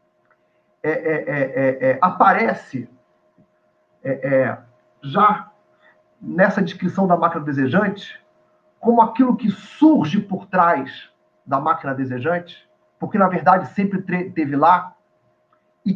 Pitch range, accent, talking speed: 135-205 Hz, Brazilian, 85 wpm